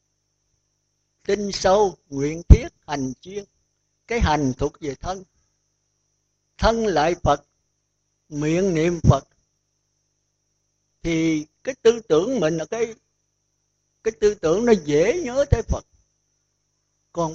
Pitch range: 140-195 Hz